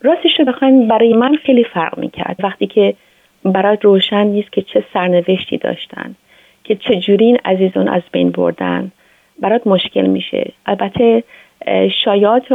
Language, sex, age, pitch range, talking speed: Persian, female, 30-49, 185-220 Hz, 140 wpm